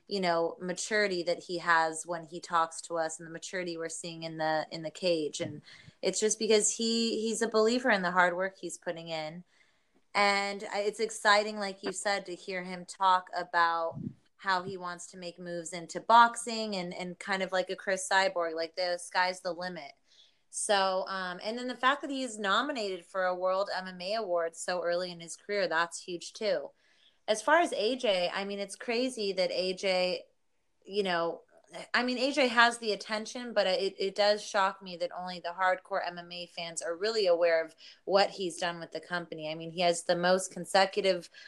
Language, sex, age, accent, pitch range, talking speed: English, female, 20-39, American, 175-210 Hz, 200 wpm